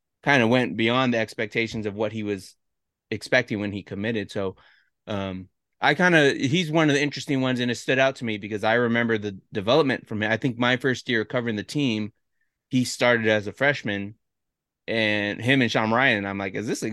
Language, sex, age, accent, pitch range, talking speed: English, male, 20-39, American, 105-135 Hz, 215 wpm